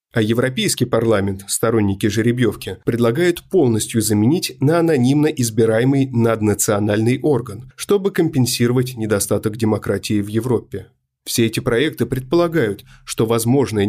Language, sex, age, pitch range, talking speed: Russian, male, 30-49, 110-140 Hz, 110 wpm